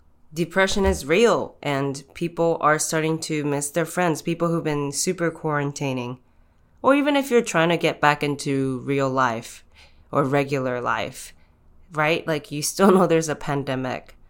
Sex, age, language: female, 20-39, English